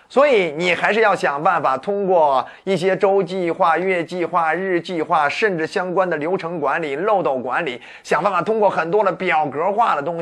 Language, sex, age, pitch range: Chinese, male, 30-49, 170-220 Hz